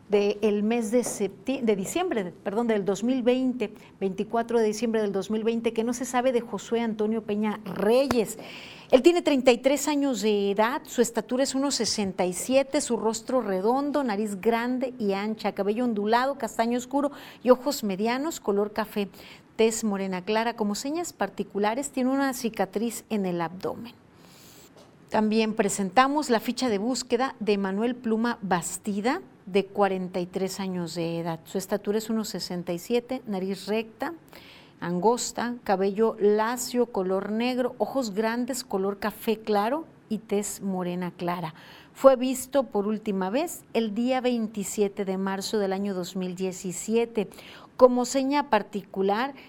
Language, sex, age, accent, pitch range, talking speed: Spanish, female, 40-59, Mexican, 200-245 Hz, 135 wpm